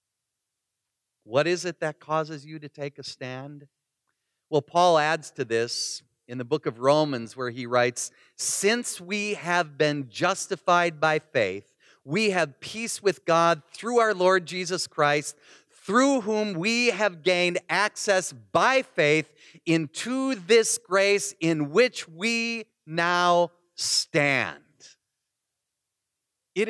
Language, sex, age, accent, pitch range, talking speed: English, male, 40-59, American, 140-220 Hz, 130 wpm